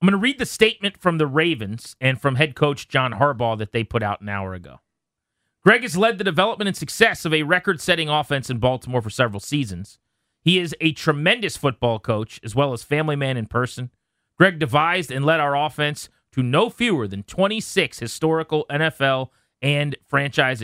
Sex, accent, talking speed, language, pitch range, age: male, American, 190 wpm, English, 115-165 Hz, 30-49